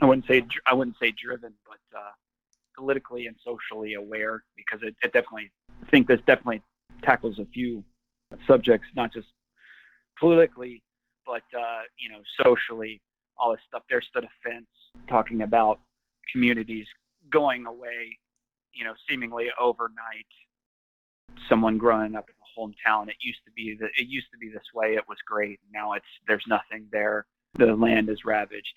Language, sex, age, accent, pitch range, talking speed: English, male, 30-49, American, 110-120 Hz, 165 wpm